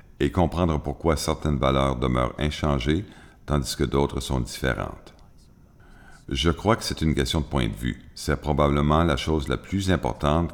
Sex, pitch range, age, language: male, 70-85 Hz, 50-69, French